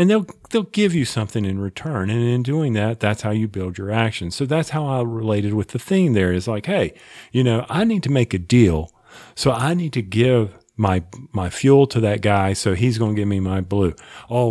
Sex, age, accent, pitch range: male, 40-59, American, 100-130 Hz